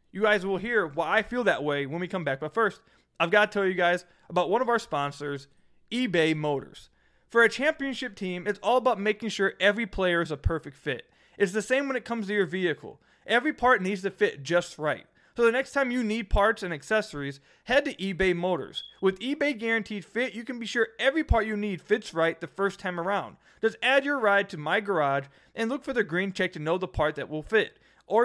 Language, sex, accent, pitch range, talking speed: English, male, American, 160-240 Hz, 235 wpm